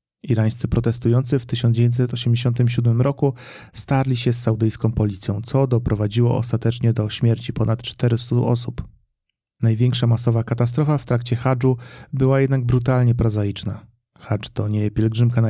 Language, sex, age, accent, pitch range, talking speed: Polish, male, 30-49, native, 115-130 Hz, 130 wpm